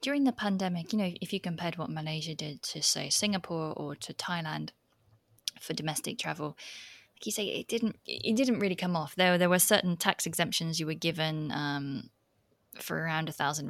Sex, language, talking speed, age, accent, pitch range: female, English, 195 wpm, 20-39, British, 145-185 Hz